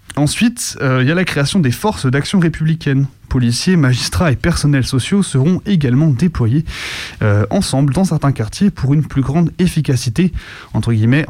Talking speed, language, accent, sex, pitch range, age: 165 wpm, French, French, male, 120-155 Hz, 20-39